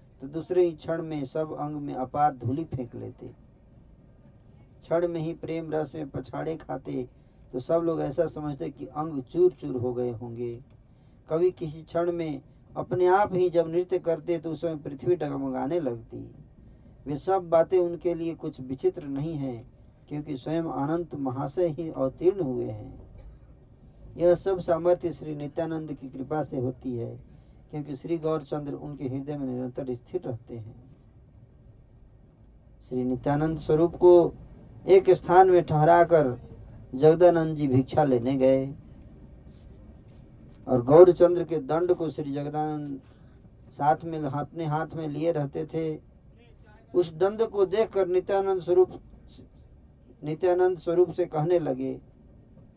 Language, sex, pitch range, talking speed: Hindi, male, 130-170 Hz, 140 wpm